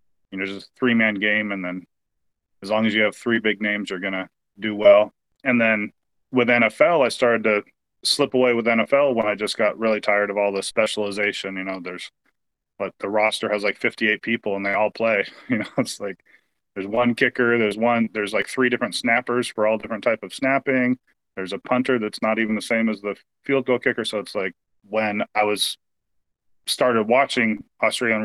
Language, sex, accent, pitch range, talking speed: English, male, American, 105-120 Hz, 210 wpm